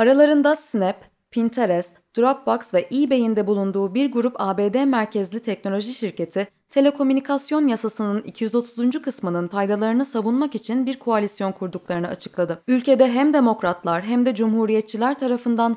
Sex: female